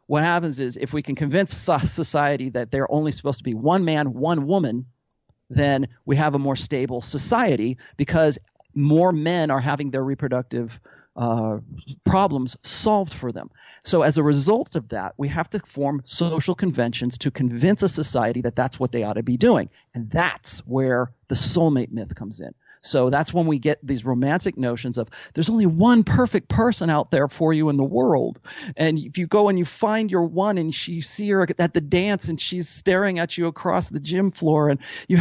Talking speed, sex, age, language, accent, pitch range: 200 wpm, male, 40-59, English, American, 130-170 Hz